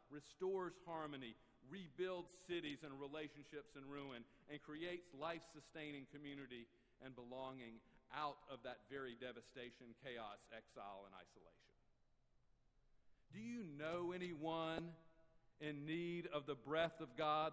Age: 50-69